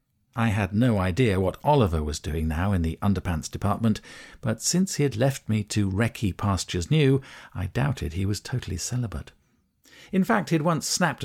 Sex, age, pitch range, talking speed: male, 50-69, 90-130 Hz, 185 wpm